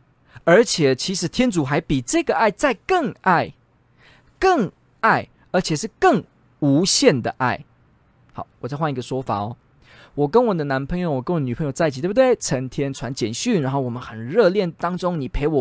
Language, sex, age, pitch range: Chinese, male, 20-39, 125-190 Hz